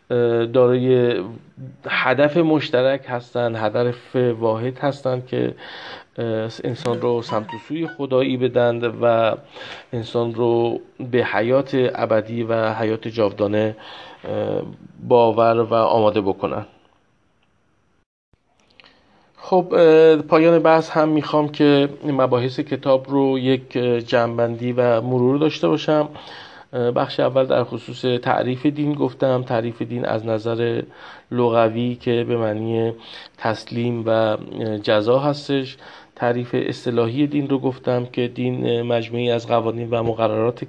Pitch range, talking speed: 115-130 Hz, 110 wpm